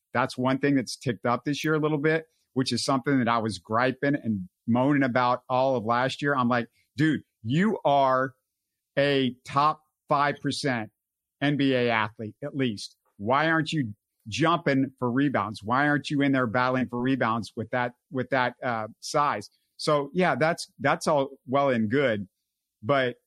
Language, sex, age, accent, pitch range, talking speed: English, male, 50-69, American, 125-145 Hz, 175 wpm